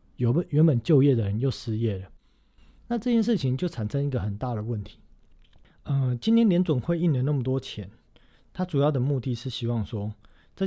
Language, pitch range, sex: Chinese, 100-130 Hz, male